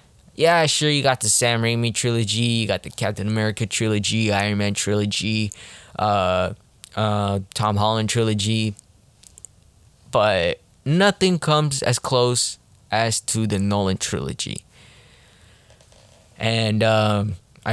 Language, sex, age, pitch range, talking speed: English, male, 20-39, 105-125 Hz, 115 wpm